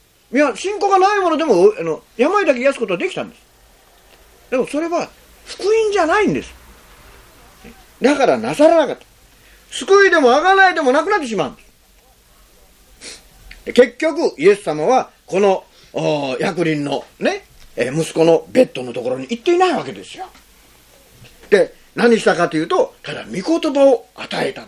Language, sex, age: Japanese, male, 40-59